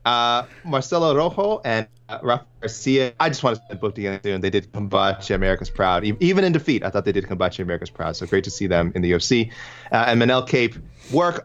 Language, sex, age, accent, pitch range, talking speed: English, male, 30-49, American, 110-150 Hz, 220 wpm